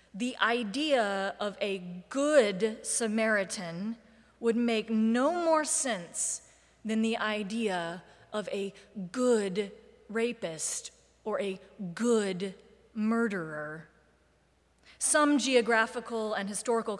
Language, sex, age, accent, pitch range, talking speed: English, female, 30-49, American, 195-240 Hz, 90 wpm